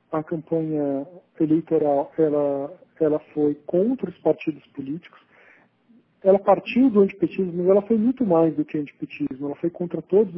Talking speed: 150 wpm